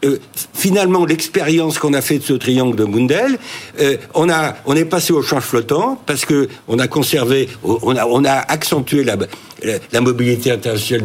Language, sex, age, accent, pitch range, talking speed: French, male, 60-79, French, 115-160 Hz, 180 wpm